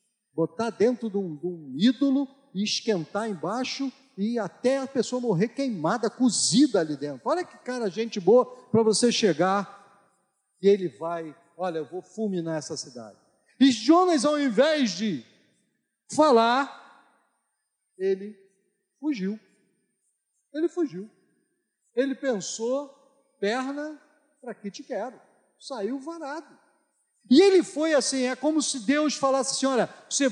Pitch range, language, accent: 215-300 Hz, Portuguese, Brazilian